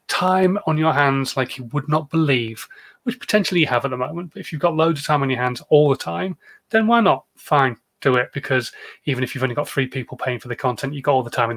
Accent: British